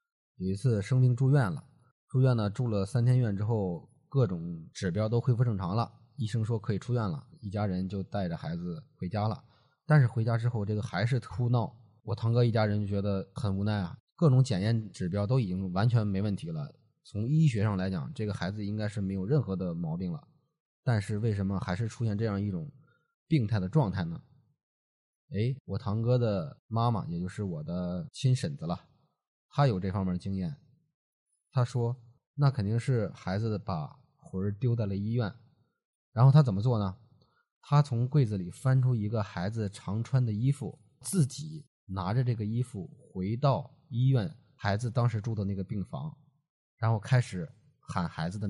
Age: 20-39